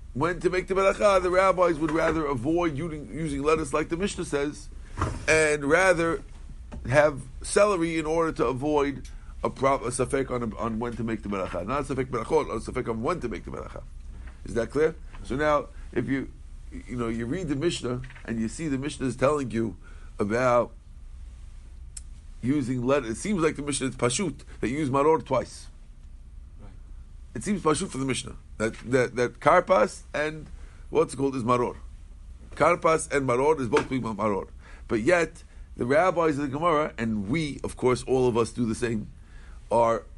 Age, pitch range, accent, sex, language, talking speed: 50-69, 105-155 Hz, American, male, English, 185 wpm